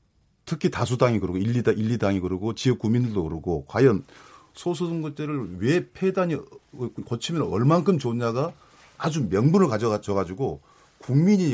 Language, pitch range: Korean, 105-145 Hz